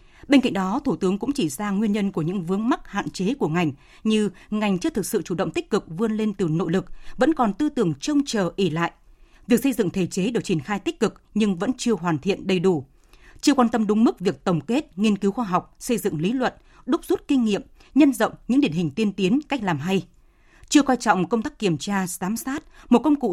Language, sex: Vietnamese, female